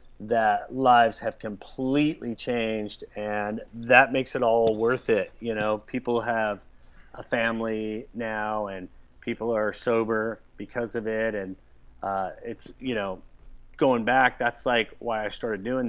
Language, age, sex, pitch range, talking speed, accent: English, 30-49, male, 110-135 Hz, 145 wpm, American